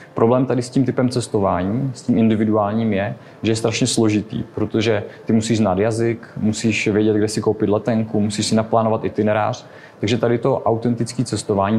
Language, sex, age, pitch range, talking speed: Czech, male, 20-39, 105-120 Hz, 175 wpm